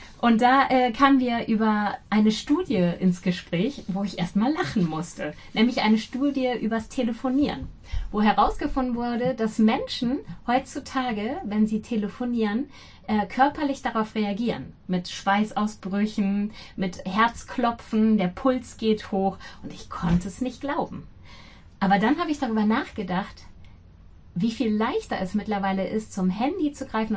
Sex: female